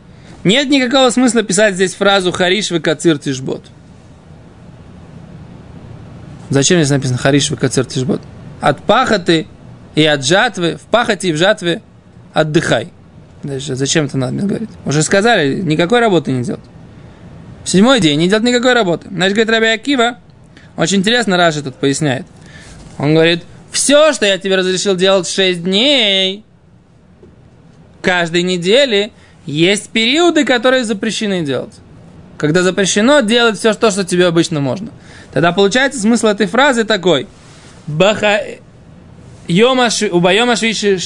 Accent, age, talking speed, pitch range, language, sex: native, 20-39, 125 wpm, 155-215 Hz, Russian, male